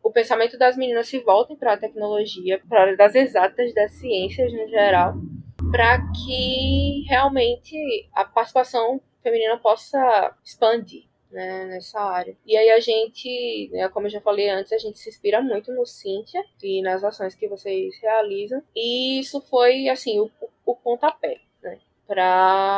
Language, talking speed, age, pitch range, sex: Portuguese, 155 wpm, 10-29, 195-265 Hz, female